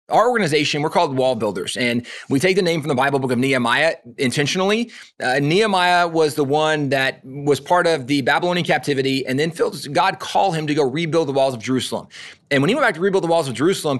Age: 30-49